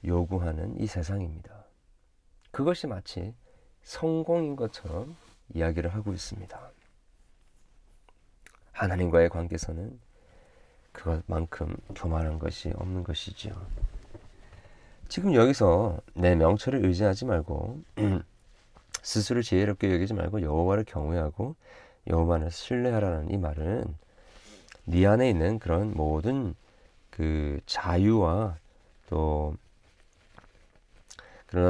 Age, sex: 40-59, male